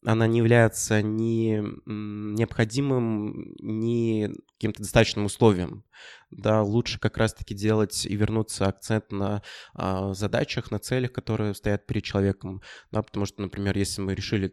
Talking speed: 130 wpm